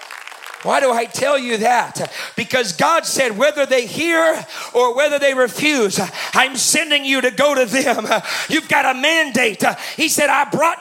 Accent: American